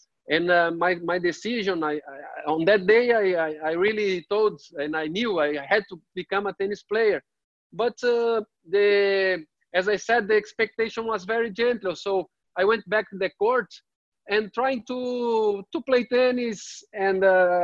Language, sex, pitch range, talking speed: English, male, 175-215 Hz, 170 wpm